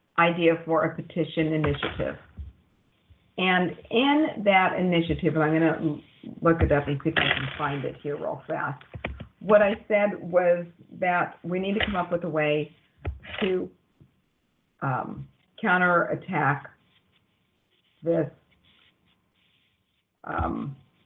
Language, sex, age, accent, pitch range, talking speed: English, female, 50-69, American, 150-190 Hz, 125 wpm